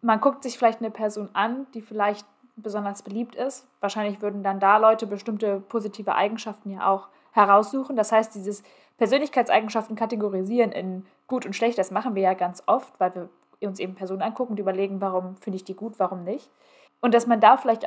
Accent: German